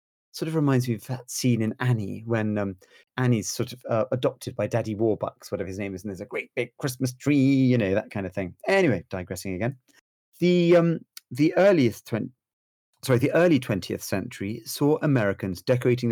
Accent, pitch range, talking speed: British, 100-135 Hz, 195 wpm